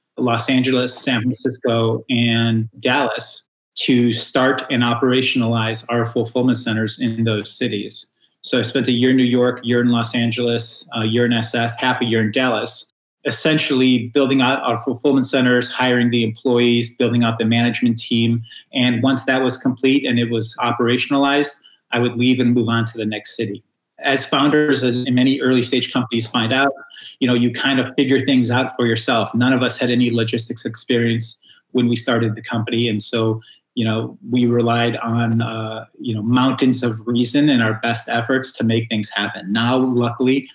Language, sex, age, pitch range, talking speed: English, male, 30-49, 115-125 Hz, 185 wpm